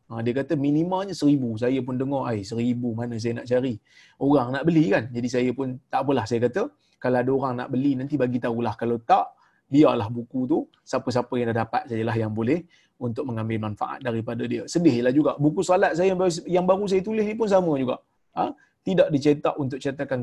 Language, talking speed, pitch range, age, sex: Malayalam, 200 wpm, 125-180 Hz, 30-49, male